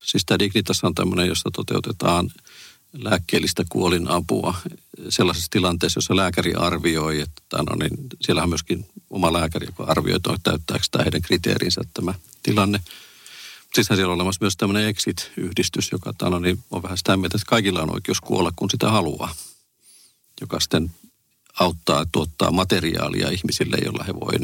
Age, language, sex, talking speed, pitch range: 50-69, Finnish, male, 150 wpm, 80-95 Hz